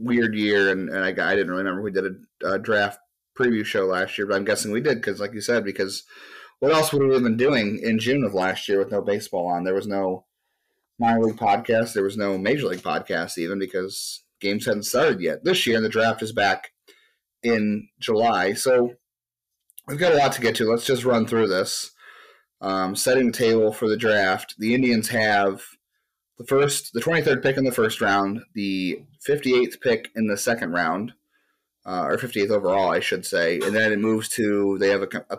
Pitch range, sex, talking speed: 100-125 Hz, male, 210 wpm